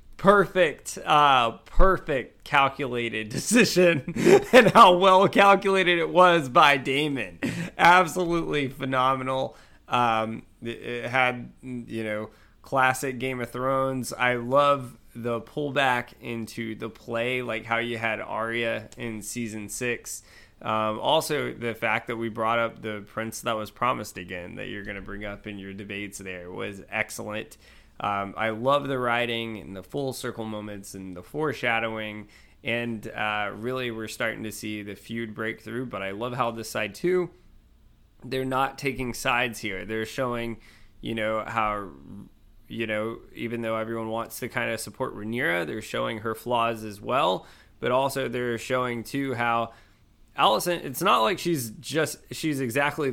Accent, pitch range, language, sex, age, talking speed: American, 110-130 Hz, English, male, 20-39, 150 wpm